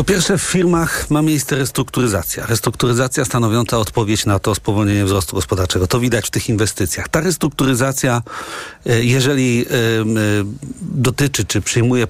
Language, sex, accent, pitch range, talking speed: Polish, male, native, 110-140 Hz, 130 wpm